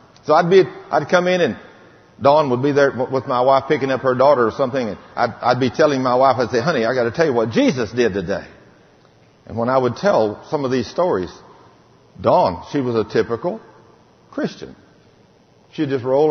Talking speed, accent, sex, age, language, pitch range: 210 wpm, American, male, 50-69, English, 130-190 Hz